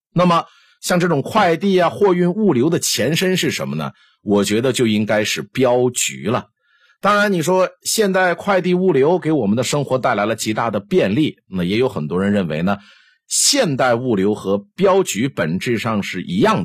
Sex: male